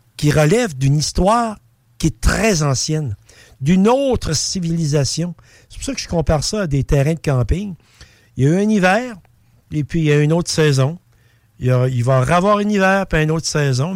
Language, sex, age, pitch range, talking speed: French, male, 60-79, 115-155 Hz, 215 wpm